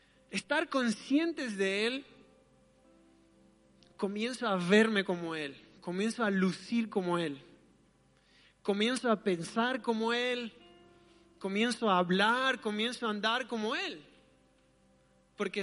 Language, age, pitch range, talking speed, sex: Spanish, 30-49, 205-260 Hz, 110 wpm, male